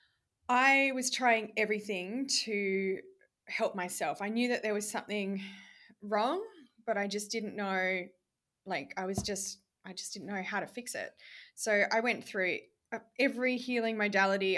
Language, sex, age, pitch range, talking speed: English, female, 20-39, 190-240 Hz, 155 wpm